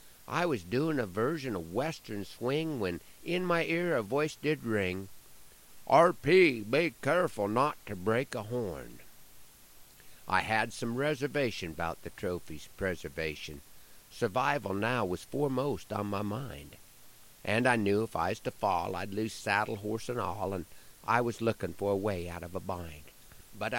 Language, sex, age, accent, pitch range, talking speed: English, male, 50-69, American, 95-125 Hz, 165 wpm